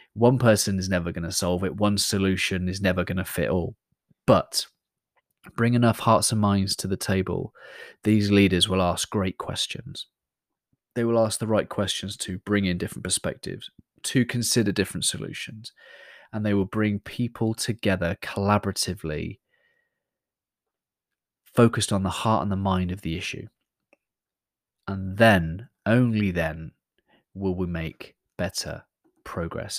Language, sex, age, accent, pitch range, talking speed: English, male, 20-39, British, 90-110 Hz, 145 wpm